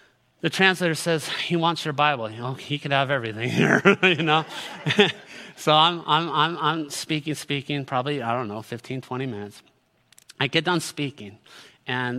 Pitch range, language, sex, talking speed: 125-155 Hz, English, male, 170 wpm